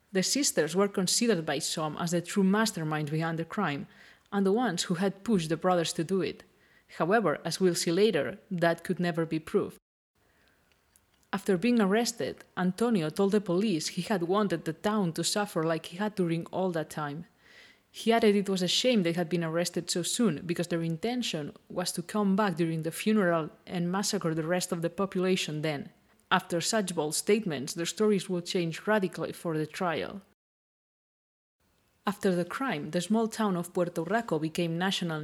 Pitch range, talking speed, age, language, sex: 170-205 Hz, 185 wpm, 30-49, English, female